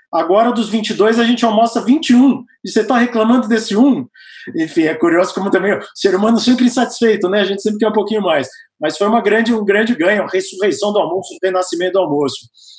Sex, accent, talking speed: male, Brazilian, 215 wpm